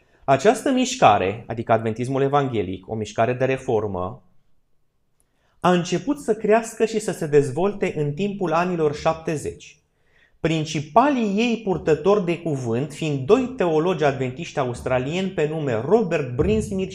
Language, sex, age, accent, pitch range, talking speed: Romanian, male, 20-39, native, 135-190 Hz, 125 wpm